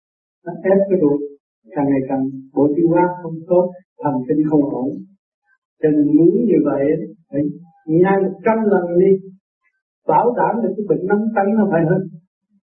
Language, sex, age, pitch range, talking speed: Vietnamese, male, 60-79, 150-205 Hz, 160 wpm